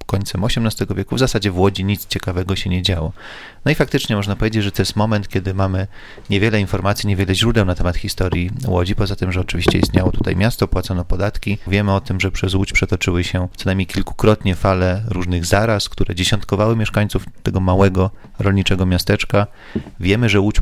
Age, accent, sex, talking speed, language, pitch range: 30-49, native, male, 185 wpm, Polish, 95-105 Hz